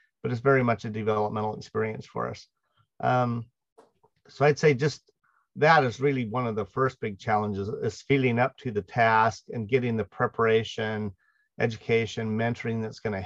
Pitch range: 110-130 Hz